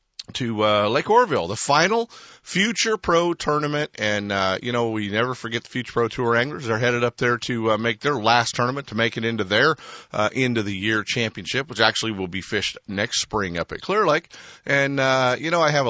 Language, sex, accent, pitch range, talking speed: English, male, American, 105-140 Hz, 225 wpm